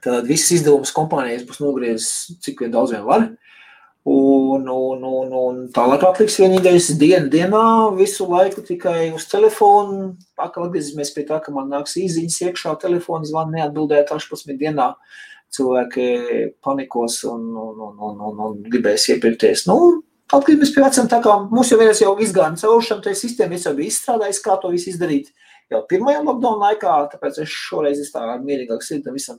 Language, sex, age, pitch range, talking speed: English, male, 30-49, 135-210 Hz, 155 wpm